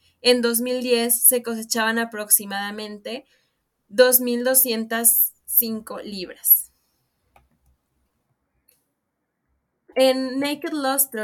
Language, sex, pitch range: Spanish, female, 210-245 Hz